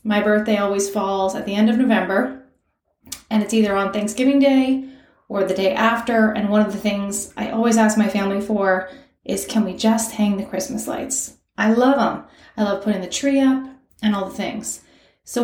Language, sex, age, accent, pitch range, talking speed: English, female, 20-39, American, 210-260 Hz, 200 wpm